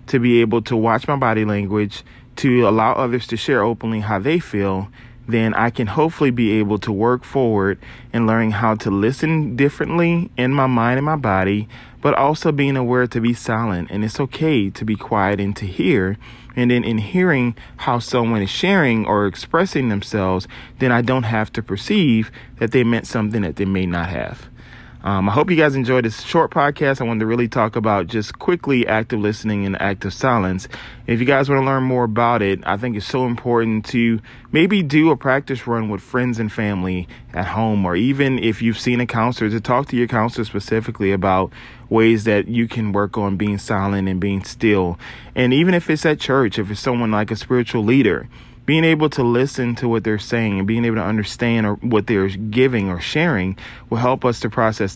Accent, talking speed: American, 205 wpm